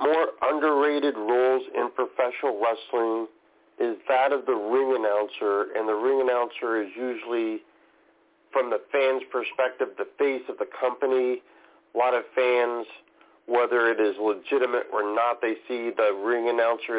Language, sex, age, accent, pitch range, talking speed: English, male, 40-59, American, 115-135 Hz, 150 wpm